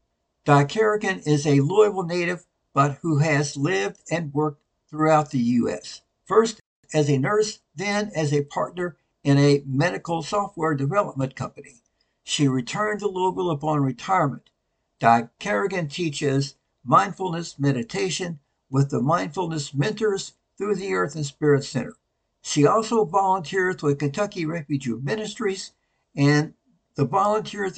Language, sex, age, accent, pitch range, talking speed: English, male, 60-79, American, 140-190 Hz, 130 wpm